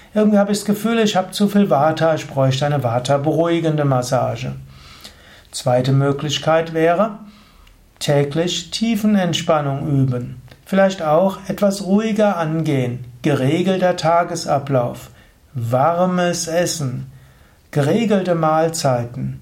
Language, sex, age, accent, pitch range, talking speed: German, male, 60-79, German, 135-190 Hz, 100 wpm